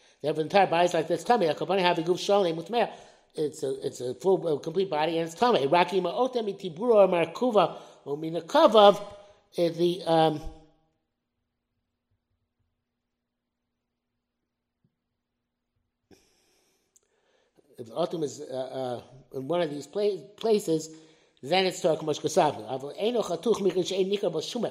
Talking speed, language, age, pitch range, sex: 80 wpm, English, 60-79, 155-205 Hz, male